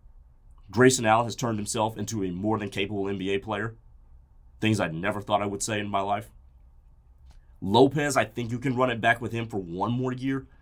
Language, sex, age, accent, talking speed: English, male, 30-49, American, 205 wpm